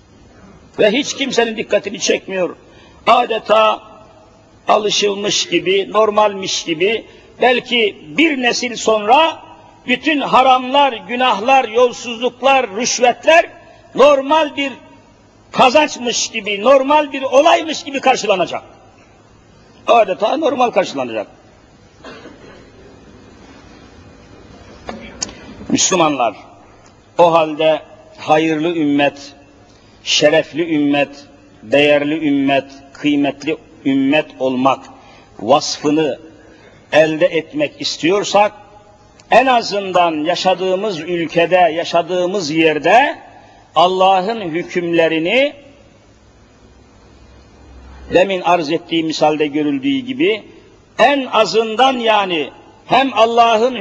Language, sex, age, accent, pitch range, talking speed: Turkish, male, 60-79, native, 155-255 Hz, 75 wpm